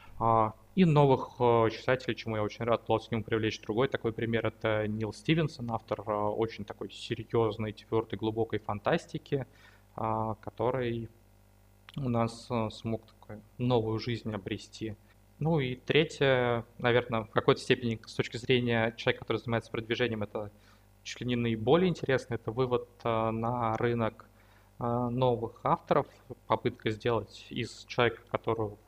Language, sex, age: Russian, male, 20-39